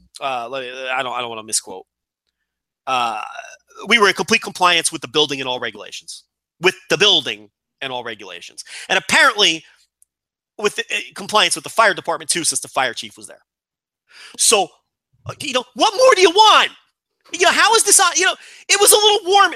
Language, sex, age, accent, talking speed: English, male, 30-49, American, 205 wpm